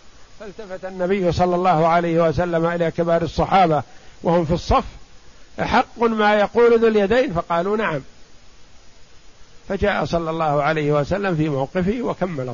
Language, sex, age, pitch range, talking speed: Arabic, male, 50-69, 165-210 Hz, 130 wpm